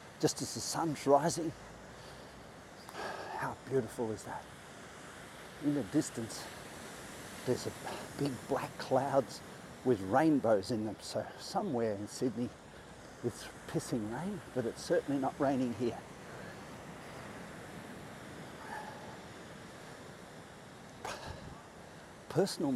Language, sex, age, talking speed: English, male, 50-69, 90 wpm